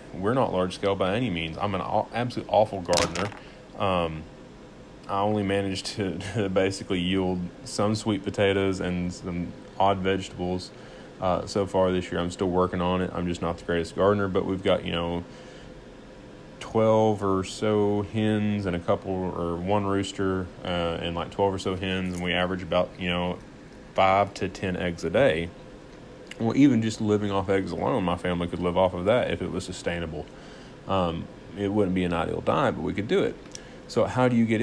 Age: 30-49